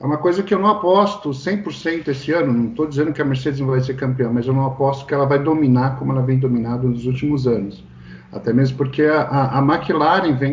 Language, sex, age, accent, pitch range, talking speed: Portuguese, male, 50-69, Brazilian, 125-145 Hz, 245 wpm